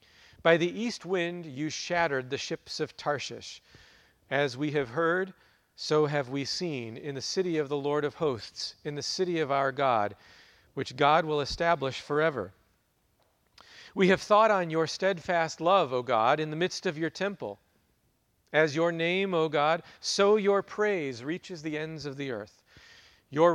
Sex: male